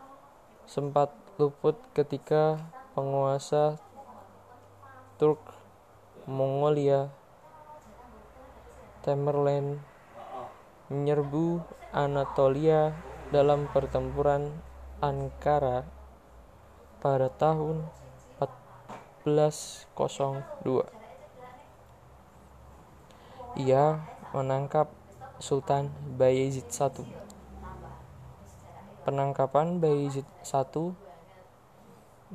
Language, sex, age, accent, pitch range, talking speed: Indonesian, male, 20-39, native, 135-150 Hz, 45 wpm